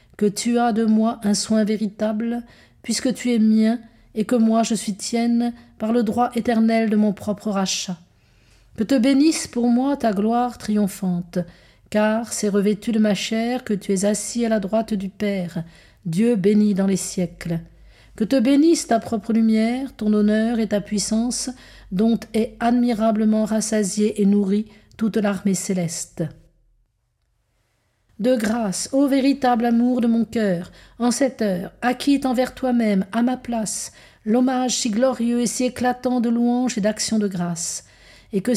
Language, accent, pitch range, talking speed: French, French, 205-240 Hz, 165 wpm